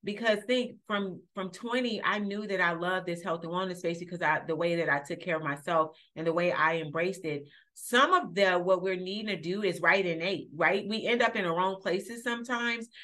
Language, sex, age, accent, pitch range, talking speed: English, female, 30-49, American, 170-210 Hz, 240 wpm